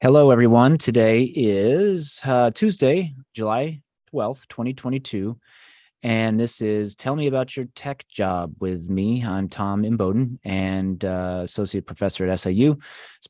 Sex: male